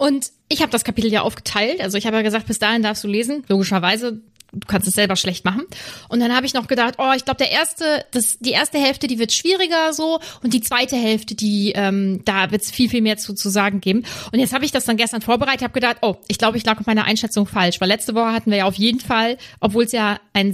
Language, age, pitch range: German, 30-49, 215-265 Hz